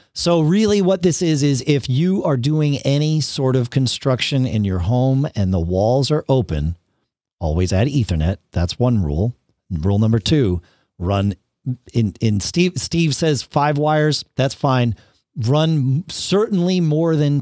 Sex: male